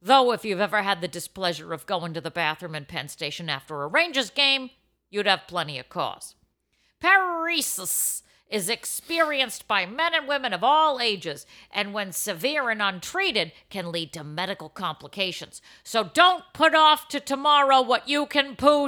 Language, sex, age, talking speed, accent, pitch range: English, female, 50-69, 170 wpm, American, 185-280 Hz